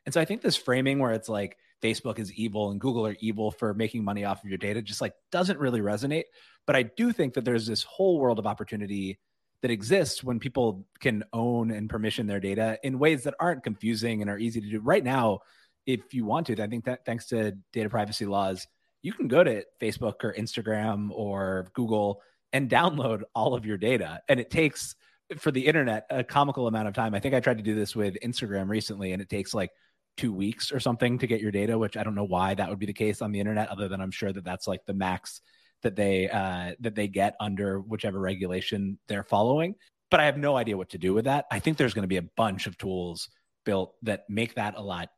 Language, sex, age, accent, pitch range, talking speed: English, male, 30-49, American, 100-125 Hz, 235 wpm